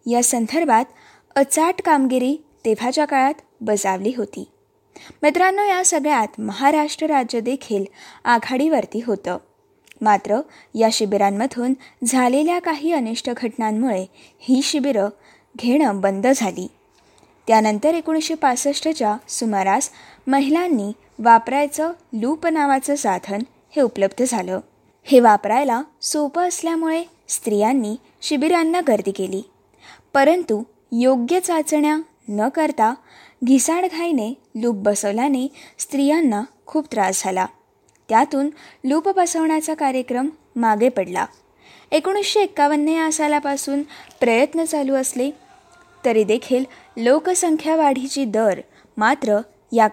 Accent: native